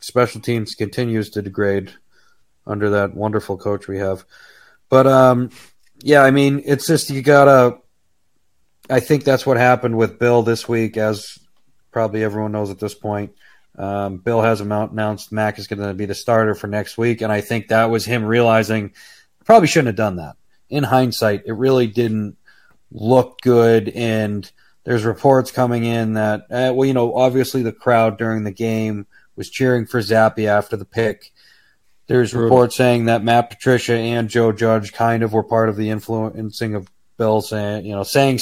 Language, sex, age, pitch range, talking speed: English, male, 30-49, 110-130 Hz, 180 wpm